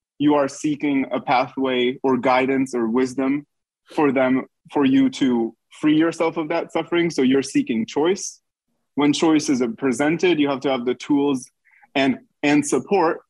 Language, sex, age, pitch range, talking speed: English, male, 20-39, 120-150 Hz, 165 wpm